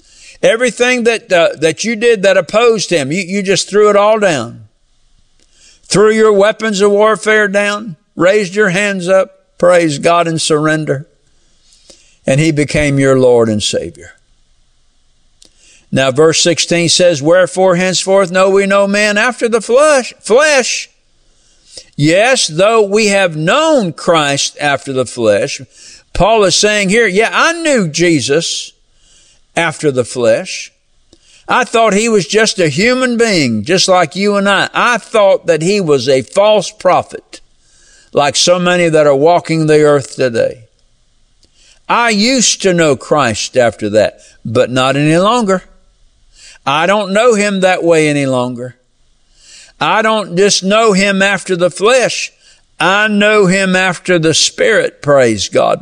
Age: 50-69